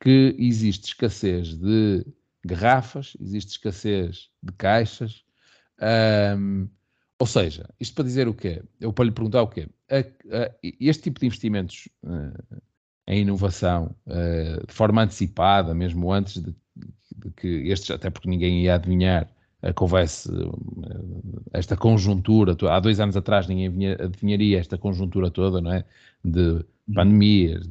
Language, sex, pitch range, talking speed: Portuguese, male, 95-115 Hz, 125 wpm